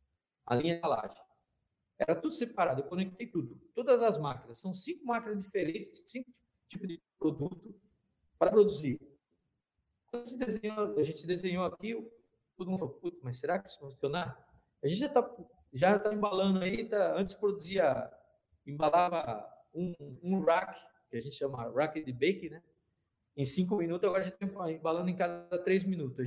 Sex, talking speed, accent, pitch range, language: male, 160 wpm, Brazilian, 155-205 Hz, Portuguese